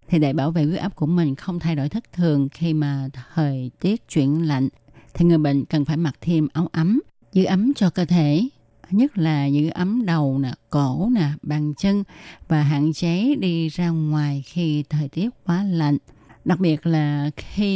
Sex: female